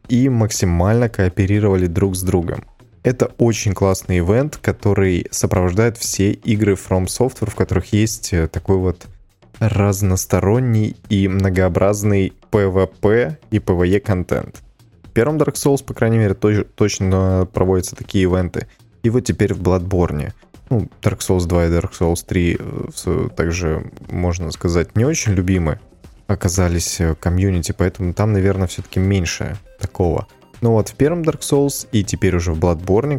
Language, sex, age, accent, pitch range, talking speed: Russian, male, 20-39, native, 90-110 Hz, 140 wpm